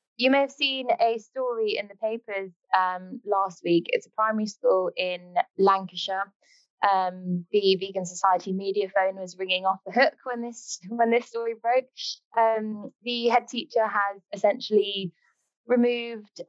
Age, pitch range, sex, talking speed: 20-39, 185-235 Hz, female, 155 wpm